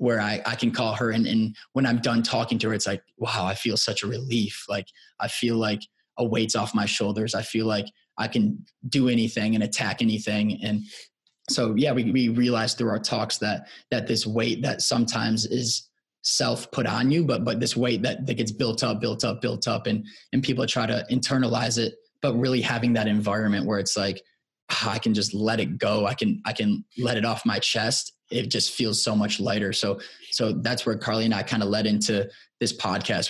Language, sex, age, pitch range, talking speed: English, male, 20-39, 105-120 Hz, 225 wpm